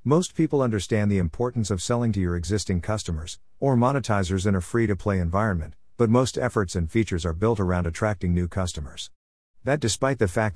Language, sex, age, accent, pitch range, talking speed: English, male, 50-69, American, 90-115 Hz, 180 wpm